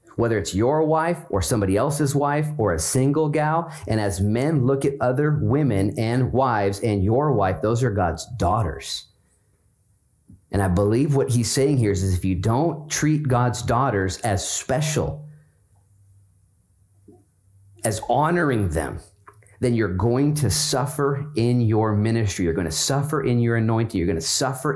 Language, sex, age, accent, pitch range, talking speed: English, male, 40-59, American, 100-145 Hz, 160 wpm